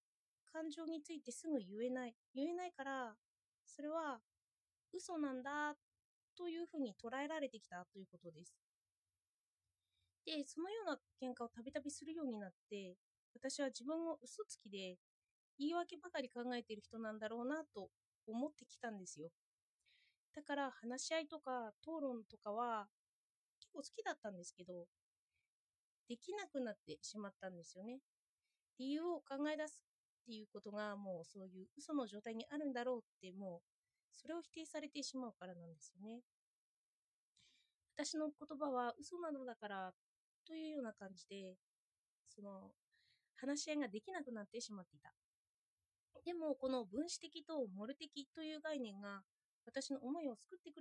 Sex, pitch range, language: female, 200-305 Hz, Japanese